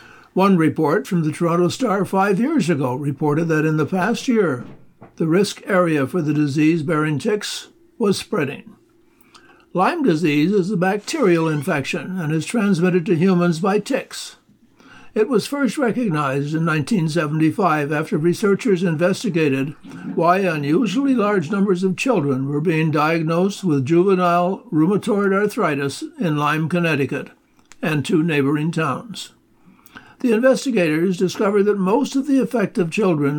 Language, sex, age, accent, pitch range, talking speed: English, male, 60-79, American, 160-210 Hz, 135 wpm